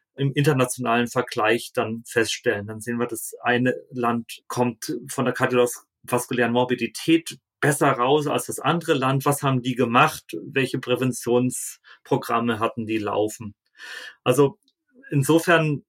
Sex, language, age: male, German, 40-59